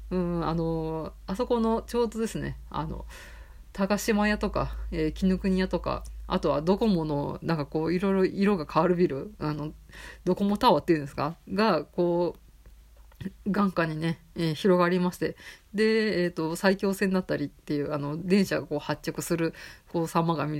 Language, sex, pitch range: Japanese, female, 160-195 Hz